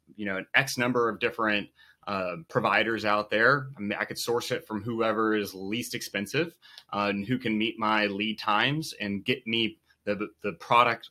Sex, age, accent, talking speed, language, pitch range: male, 30-49, American, 195 wpm, English, 105-130 Hz